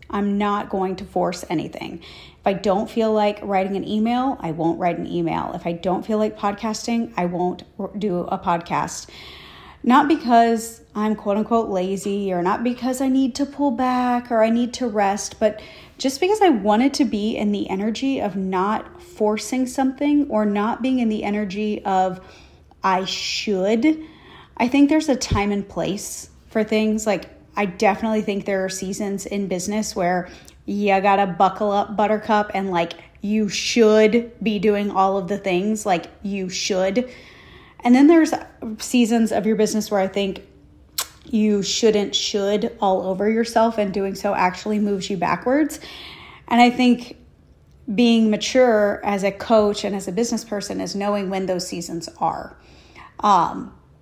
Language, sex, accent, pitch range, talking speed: English, female, American, 195-230 Hz, 170 wpm